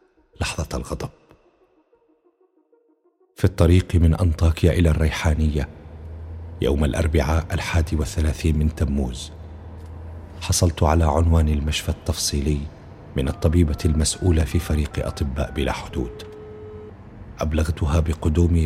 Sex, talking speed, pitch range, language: male, 95 wpm, 75-95 Hz, Arabic